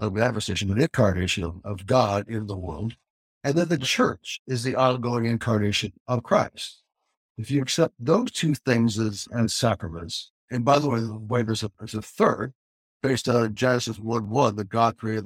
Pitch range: 110-145 Hz